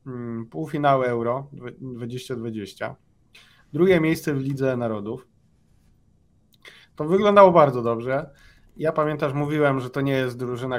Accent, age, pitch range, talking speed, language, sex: native, 20-39, 115-140 Hz, 110 wpm, Polish, male